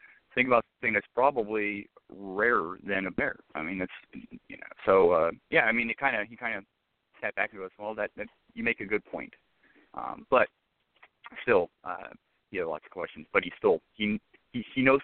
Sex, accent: male, American